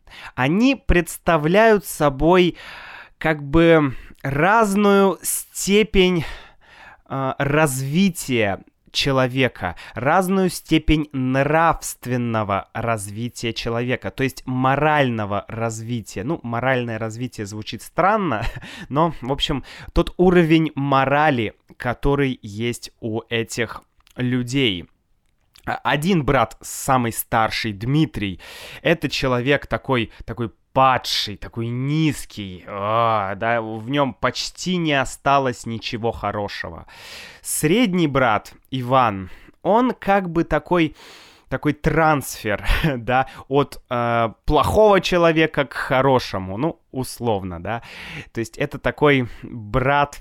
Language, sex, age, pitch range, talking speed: Russian, male, 20-39, 115-155 Hz, 95 wpm